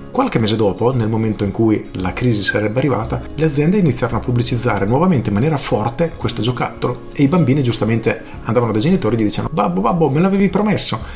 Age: 40-59